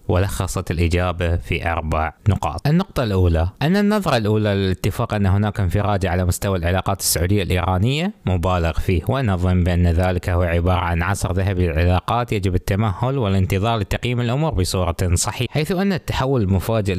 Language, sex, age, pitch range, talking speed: Arabic, male, 20-39, 85-110 Hz, 145 wpm